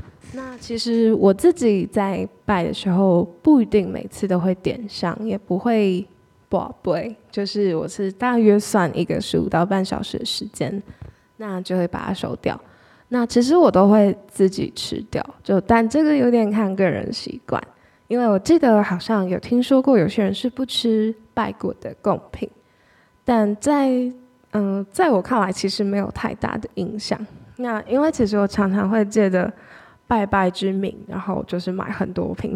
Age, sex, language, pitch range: 10-29, female, Chinese, 185-230 Hz